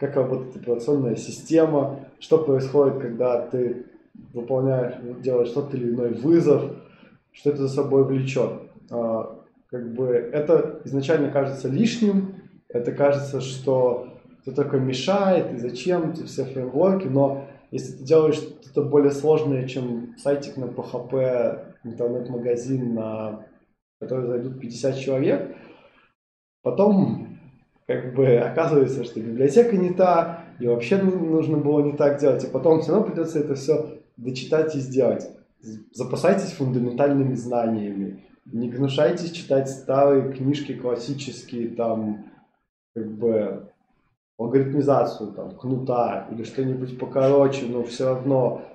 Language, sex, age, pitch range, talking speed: Russian, male, 20-39, 120-145 Hz, 120 wpm